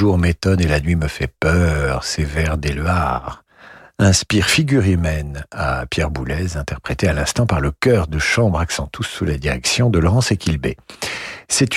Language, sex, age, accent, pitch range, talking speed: French, male, 50-69, French, 80-110 Hz, 170 wpm